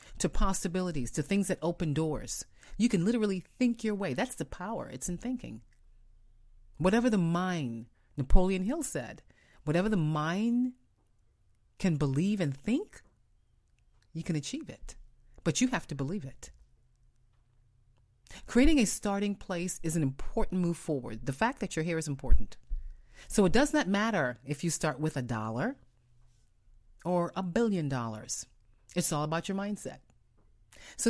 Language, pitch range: English, 125-205 Hz